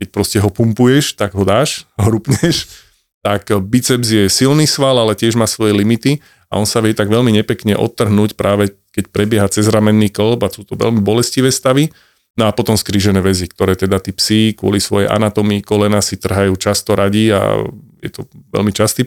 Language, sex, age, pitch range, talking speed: Slovak, male, 30-49, 100-125 Hz, 190 wpm